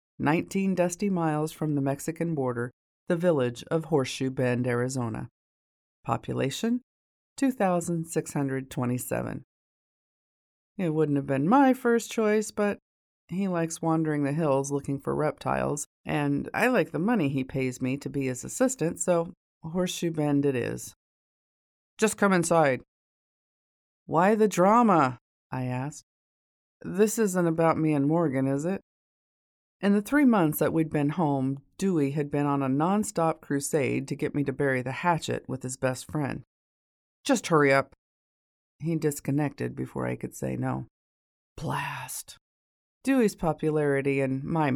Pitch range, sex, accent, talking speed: 130-165 Hz, female, American, 140 wpm